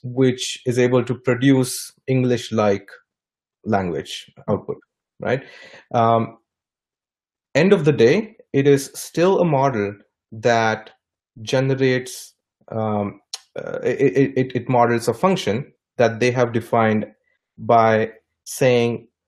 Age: 30-49